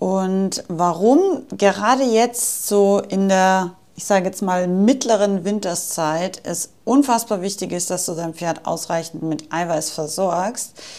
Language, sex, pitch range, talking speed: German, female, 180-220 Hz, 135 wpm